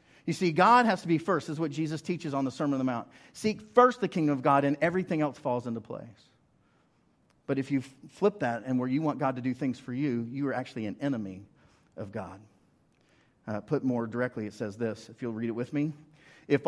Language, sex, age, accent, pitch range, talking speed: English, male, 40-59, American, 130-190 Hz, 235 wpm